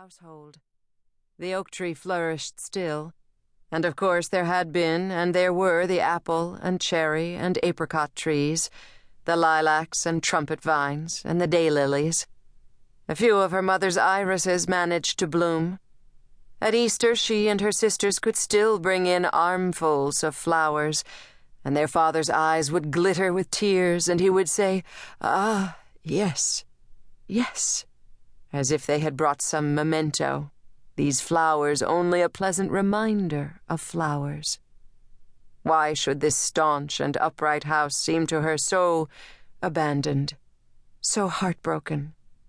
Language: English